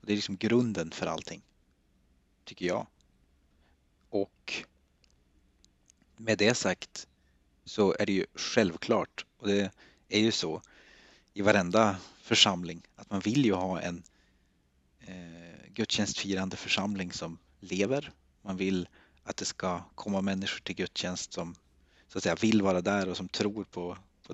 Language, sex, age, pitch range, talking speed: Swedish, male, 30-49, 70-105 Hz, 140 wpm